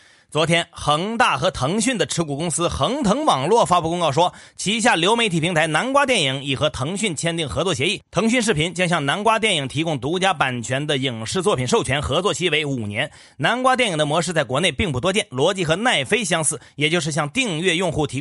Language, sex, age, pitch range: Chinese, male, 30-49, 140-195 Hz